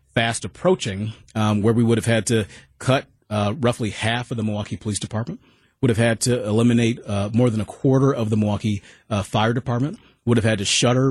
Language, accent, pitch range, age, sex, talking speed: English, American, 110-130 Hz, 30-49, male, 210 wpm